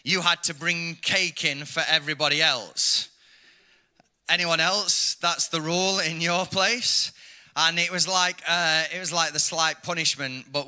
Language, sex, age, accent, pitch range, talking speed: English, male, 20-39, British, 150-180 Hz, 165 wpm